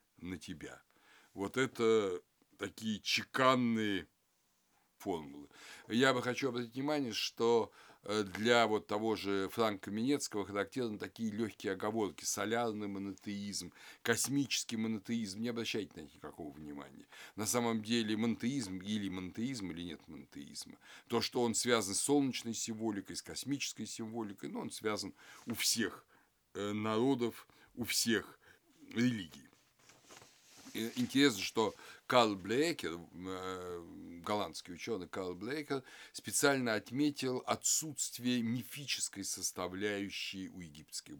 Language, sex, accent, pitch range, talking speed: Russian, male, native, 100-125 Hz, 110 wpm